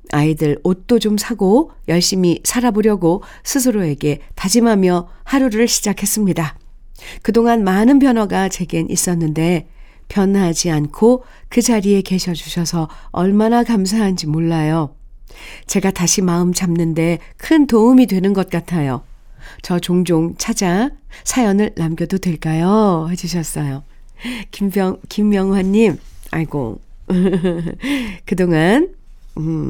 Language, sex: Korean, female